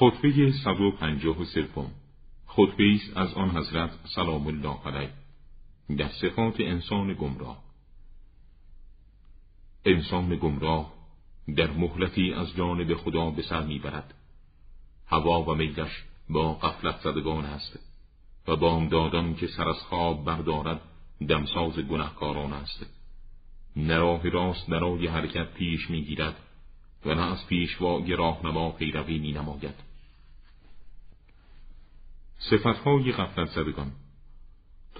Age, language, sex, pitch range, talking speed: 50-69, Persian, male, 80-95 Hz, 105 wpm